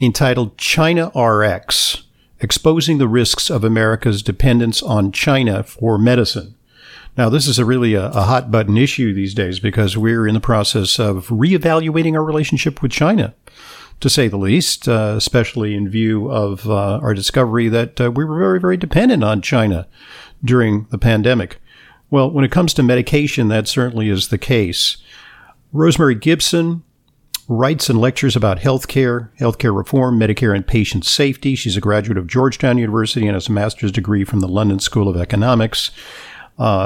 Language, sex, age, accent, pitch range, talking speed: English, male, 50-69, American, 105-130 Hz, 165 wpm